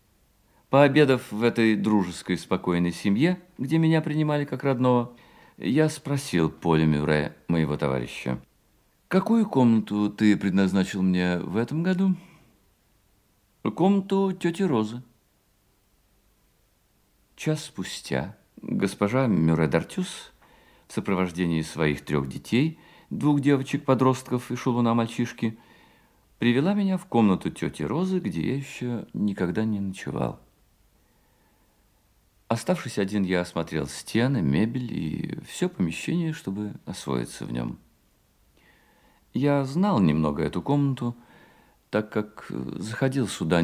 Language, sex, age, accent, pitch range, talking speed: Russian, male, 50-69, native, 90-145 Hz, 105 wpm